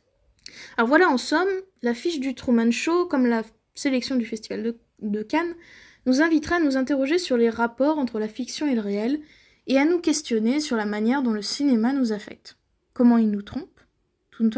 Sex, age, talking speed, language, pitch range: female, 20-39, 200 wpm, French, 225-280 Hz